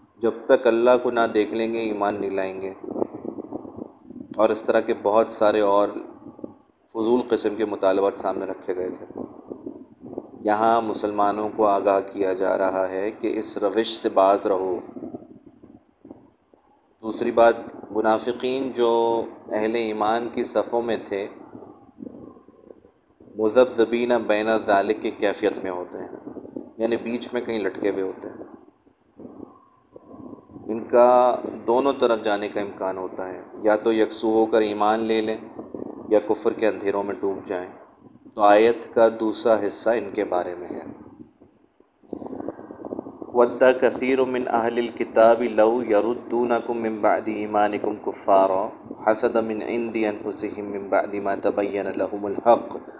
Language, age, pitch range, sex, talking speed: Urdu, 30-49, 100-115 Hz, male, 130 wpm